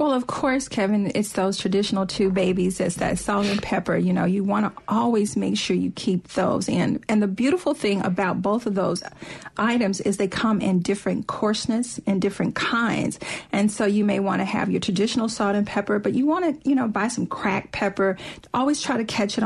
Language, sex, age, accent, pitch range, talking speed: English, female, 40-59, American, 195-235 Hz, 220 wpm